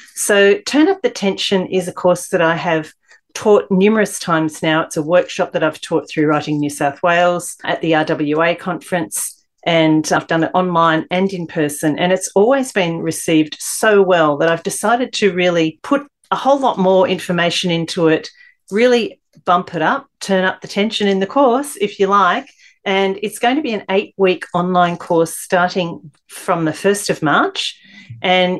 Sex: female